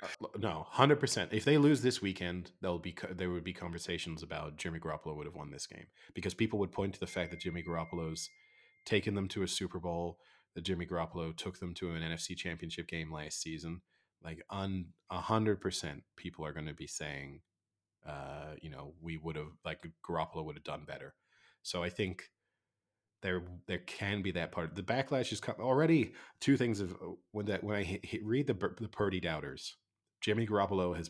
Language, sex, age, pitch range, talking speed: English, male, 30-49, 85-100 Hz, 195 wpm